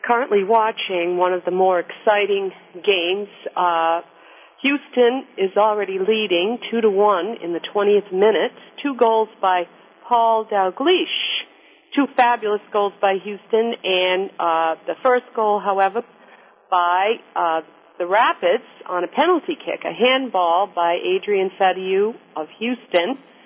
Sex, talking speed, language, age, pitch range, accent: female, 130 wpm, English, 50-69, 185-230 Hz, American